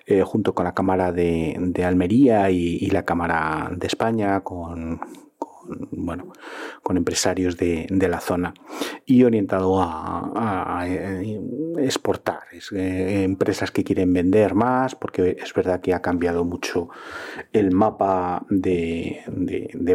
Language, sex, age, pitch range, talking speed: Spanish, male, 40-59, 85-100 Hz, 130 wpm